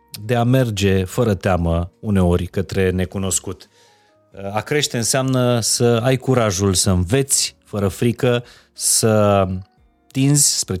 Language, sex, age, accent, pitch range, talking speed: Romanian, male, 30-49, native, 95-120 Hz, 115 wpm